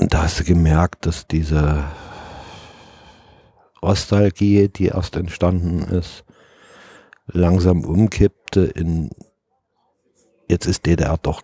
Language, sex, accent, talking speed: German, male, German, 100 wpm